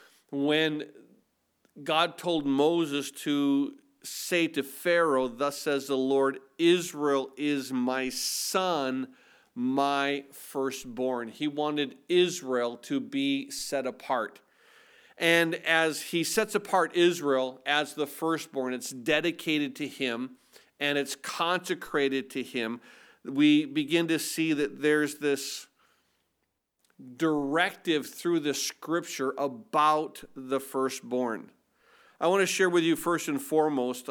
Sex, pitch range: male, 135-165 Hz